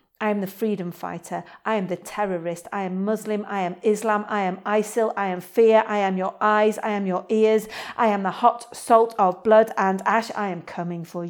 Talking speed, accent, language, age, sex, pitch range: 225 wpm, British, English, 50-69, female, 185-220 Hz